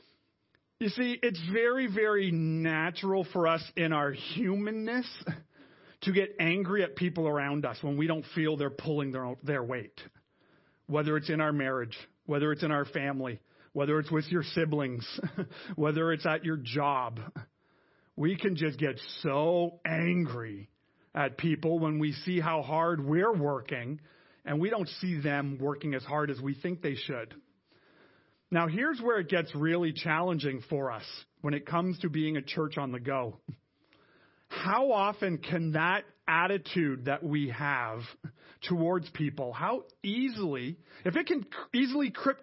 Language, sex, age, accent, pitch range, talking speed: English, male, 40-59, American, 145-185 Hz, 155 wpm